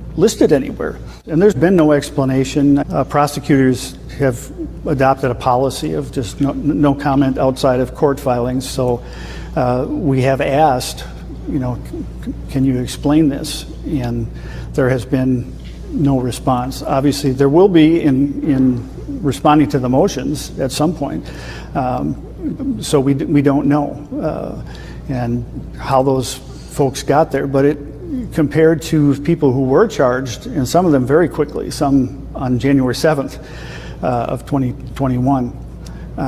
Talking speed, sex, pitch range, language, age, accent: 145 wpm, male, 125-145 Hz, English, 50-69, American